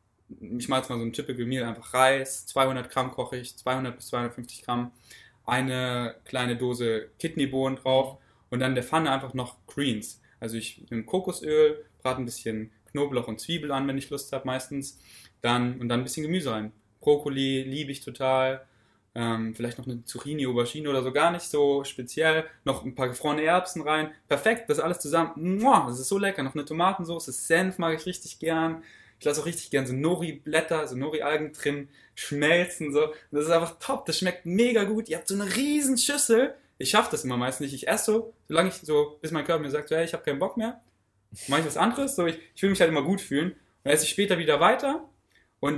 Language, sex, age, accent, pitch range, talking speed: German, male, 10-29, German, 125-170 Hz, 210 wpm